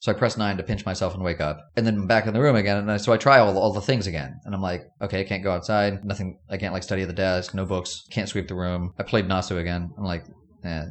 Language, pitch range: English, 95-125 Hz